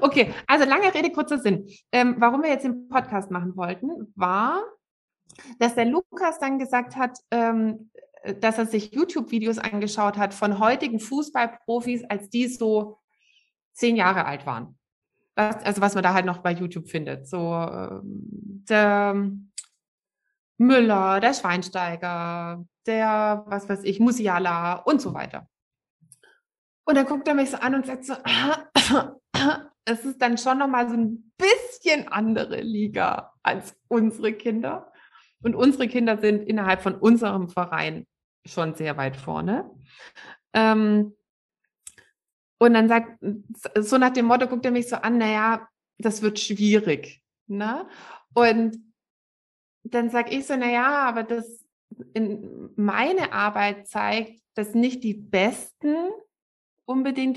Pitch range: 205-260 Hz